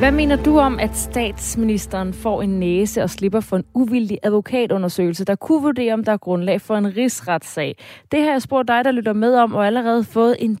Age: 30-49